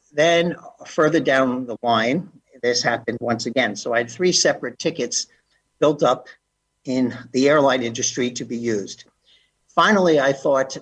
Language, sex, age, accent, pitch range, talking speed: English, male, 50-69, American, 120-140 Hz, 150 wpm